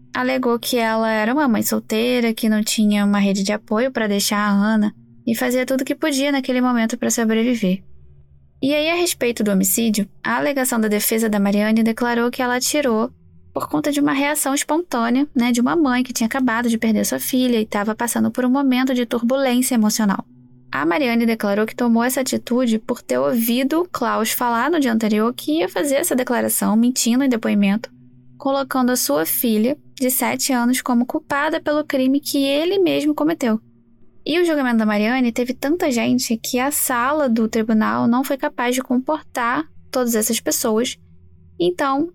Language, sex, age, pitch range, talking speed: Portuguese, female, 10-29, 220-265 Hz, 185 wpm